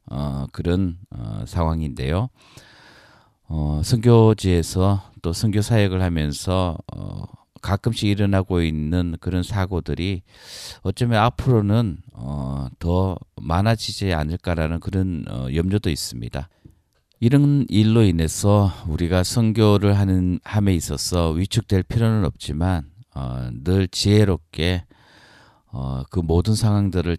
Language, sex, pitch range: Korean, male, 80-100 Hz